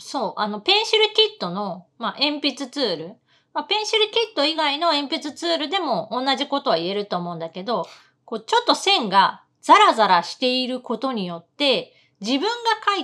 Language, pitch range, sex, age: Japanese, 205-340 Hz, female, 30-49